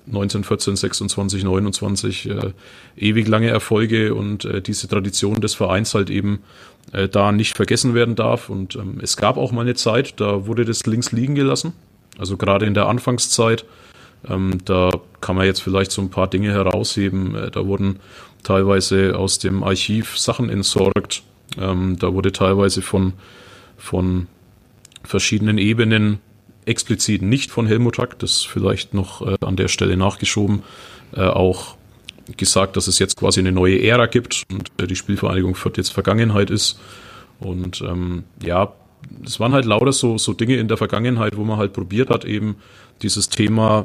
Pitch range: 95-115 Hz